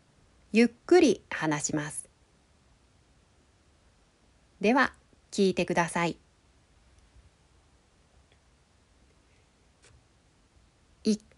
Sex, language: female, Japanese